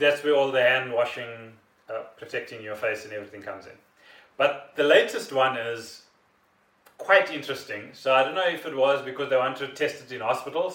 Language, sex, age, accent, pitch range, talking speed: English, male, 30-49, South African, 120-145 Hz, 200 wpm